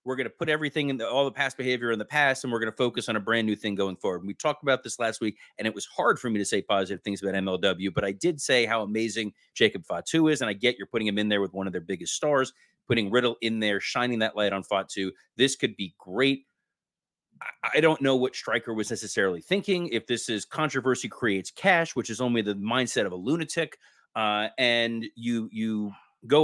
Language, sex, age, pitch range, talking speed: English, male, 30-49, 105-135 Hz, 245 wpm